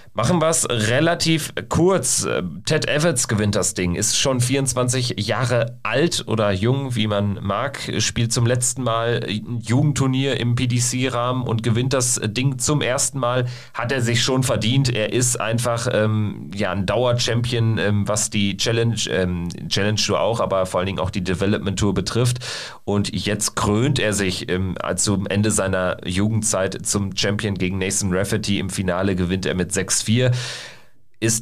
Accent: German